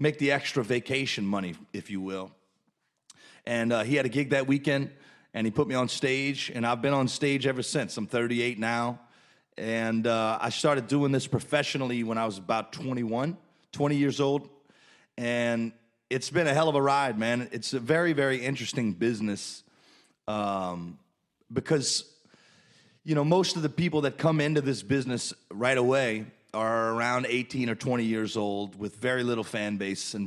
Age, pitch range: 30-49, 110-135 Hz